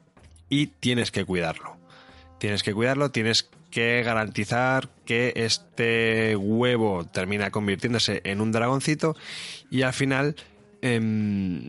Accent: Spanish